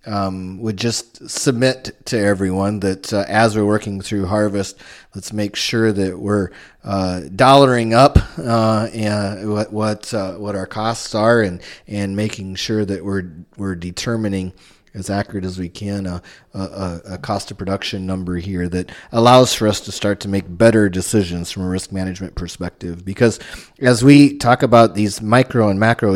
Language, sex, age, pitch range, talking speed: English, male, 30-49, 95-110 Hz, 170 wpm